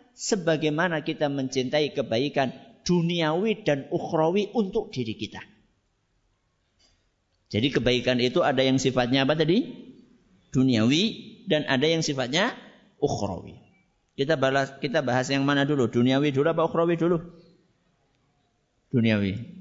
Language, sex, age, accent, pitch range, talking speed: Indonesian, male, 50-69, native, 120-185 Hz, 115 wpm